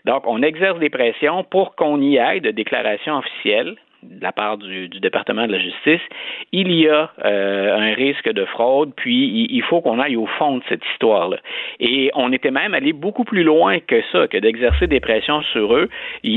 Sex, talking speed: male, 210 wpm